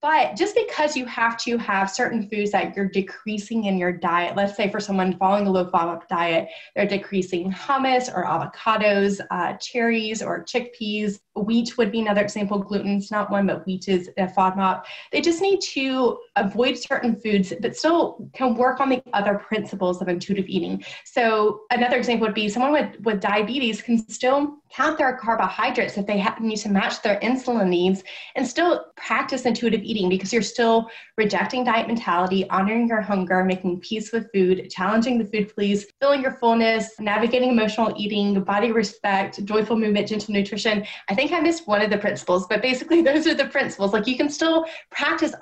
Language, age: English, 20-39